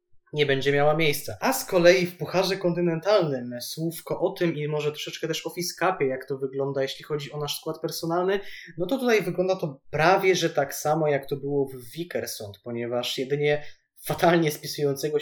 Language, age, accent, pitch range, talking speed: Polish, 20-39, native, 135-170 Hz, 180 wpm